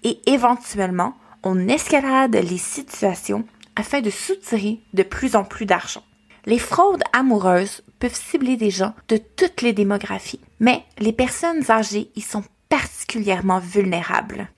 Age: 20-39